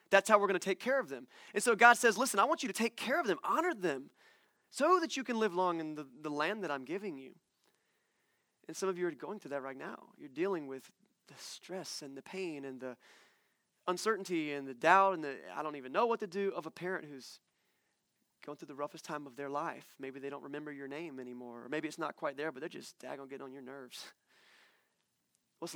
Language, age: English, 30-49